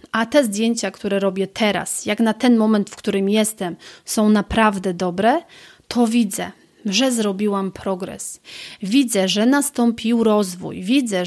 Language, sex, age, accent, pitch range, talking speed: Polish, female, 30-49, native, 205-245 Hz, 140 wpm